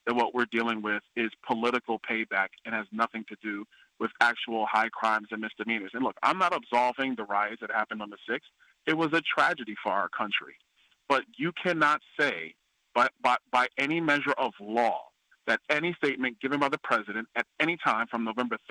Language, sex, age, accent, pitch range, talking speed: English, male, 40-59, American, 115-150 Hz, 195 wpm